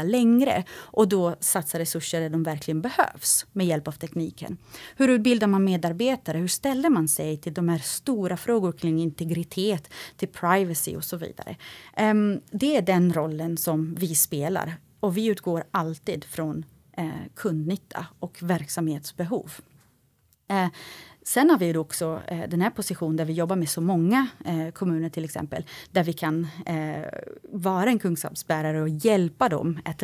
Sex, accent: female, native